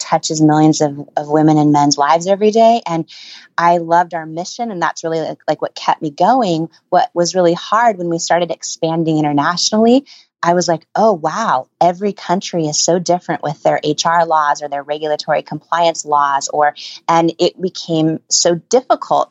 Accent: American